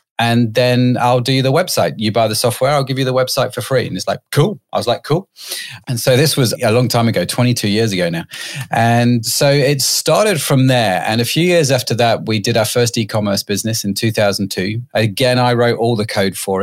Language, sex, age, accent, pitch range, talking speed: English, male, 30-49, British, 105-135 Hz, 230 wpm